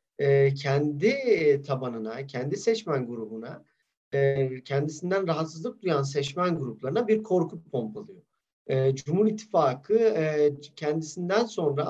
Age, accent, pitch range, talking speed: 40-59, native, 140-200 Hz, 85 wpm